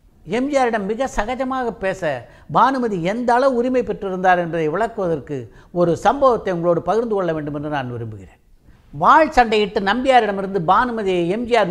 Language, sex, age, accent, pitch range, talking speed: Tamil, female, 60-79, native, 150-230 Hz, 125 wpm